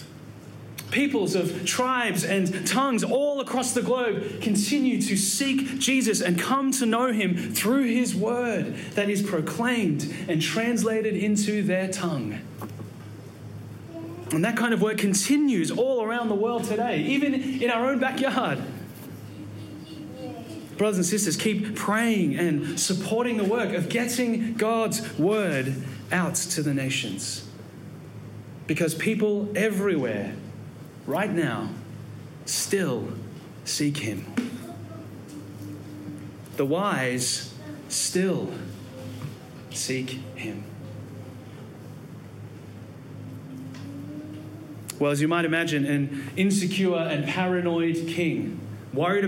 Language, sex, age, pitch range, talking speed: English, male, 30-49, 130-210 Hz, 105 wpm